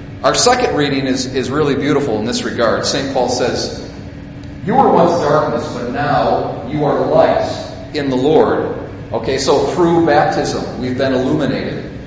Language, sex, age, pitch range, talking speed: English, male, 40-59, 130-160 Hz, 160 wpm